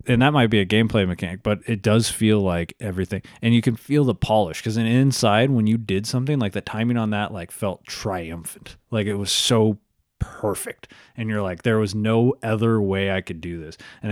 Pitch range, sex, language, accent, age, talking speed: 90-115 Hz, male, English, American, 20-39, 215 wpm